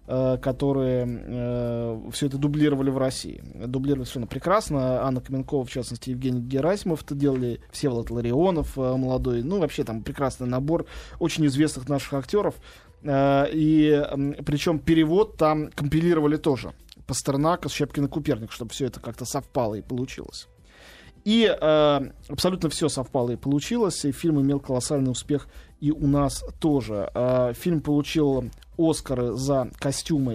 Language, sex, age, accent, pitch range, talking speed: Russian, male, 20-39, native, 125-155 Hz, 145 wpm